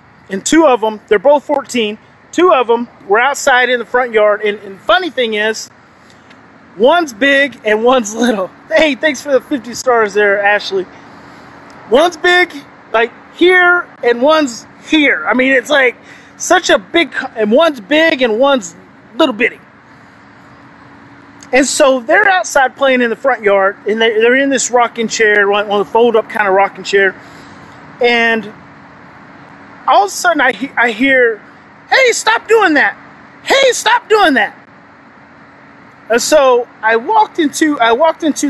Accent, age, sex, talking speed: American, 30-49, male, 160 wpm